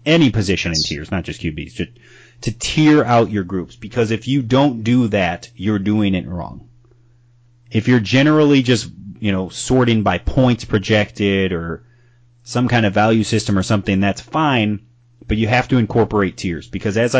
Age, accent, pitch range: 30-49, American, 100-120 Hz